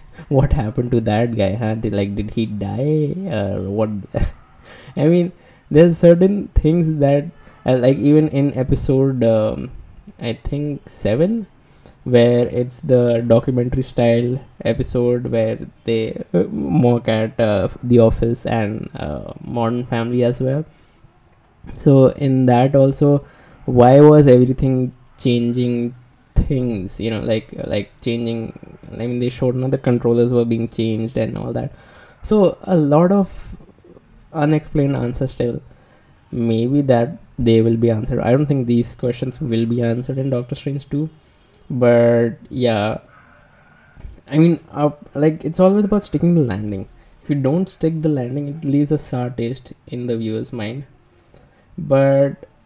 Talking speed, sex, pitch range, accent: 145 wpm, male, 115-145 Hz, native